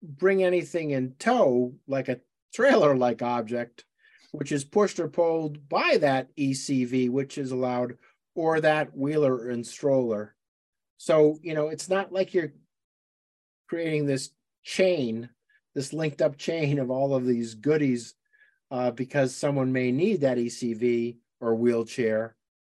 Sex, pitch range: male, 115-155 Hz